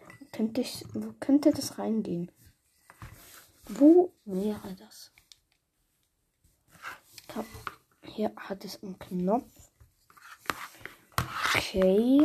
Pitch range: 215-285 Hz